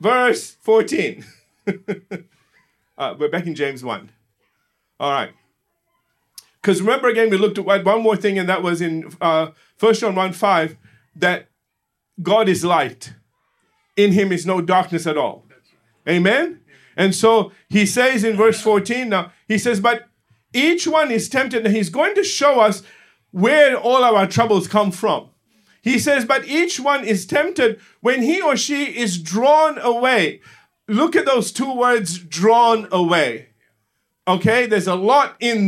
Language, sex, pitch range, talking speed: English, male, 190-255 Hz, 155 wpm